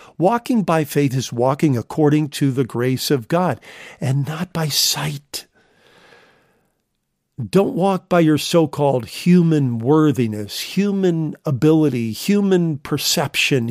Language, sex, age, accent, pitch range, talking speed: English, male, 50-69, American, 130-175 Hz, 115 wpm